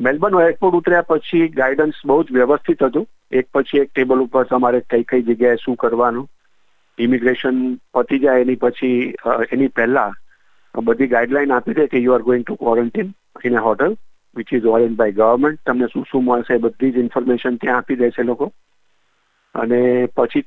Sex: male